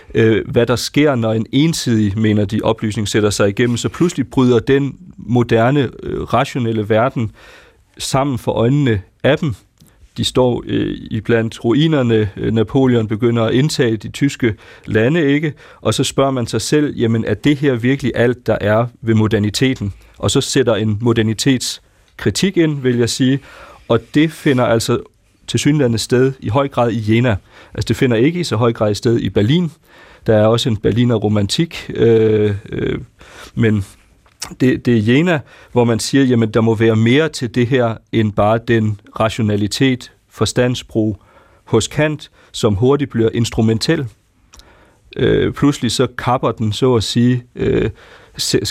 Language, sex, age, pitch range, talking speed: Danish, male, 40-59, 110-130 Hz, 160 wpm